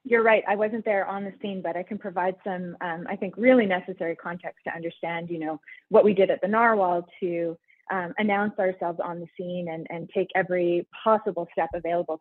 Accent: American